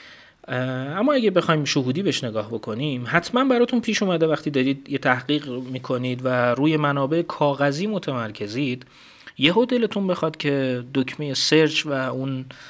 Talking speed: 140 wpm